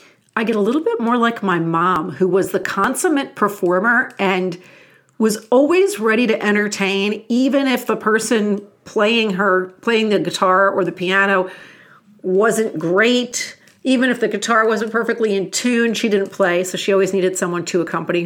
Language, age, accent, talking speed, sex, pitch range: English, 40-59, American, 170 wpm, female, 185-225 Hz